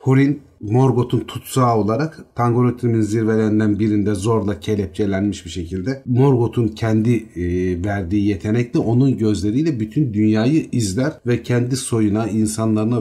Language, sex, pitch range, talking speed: Turkish, male, 95-125 Hz, 110 wpm